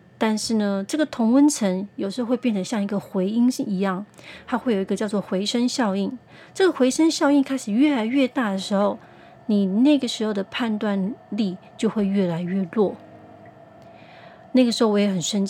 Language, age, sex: Chinese, 30-49, female